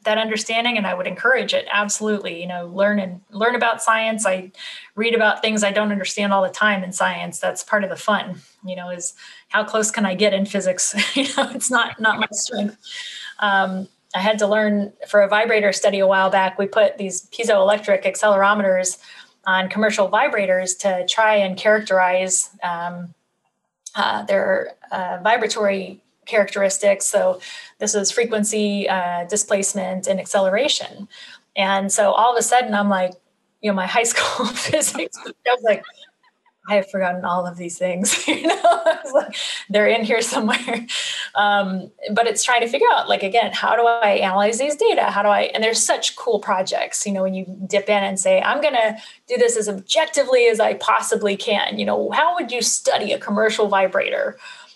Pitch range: 190-230 Hz